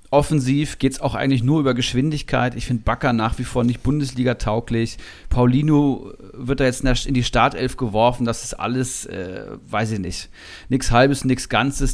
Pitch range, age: 110-130 Hz, 40-59